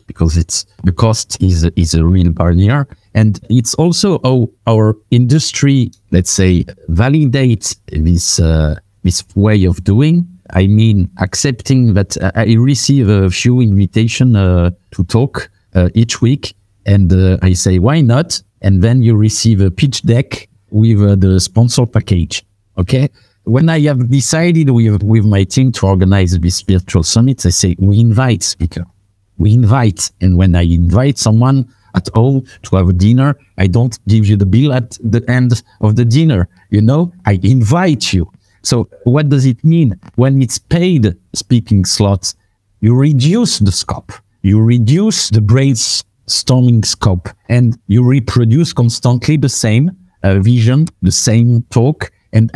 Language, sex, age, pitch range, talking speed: English, male, 50-69, 95-130 Hz, 155 wpm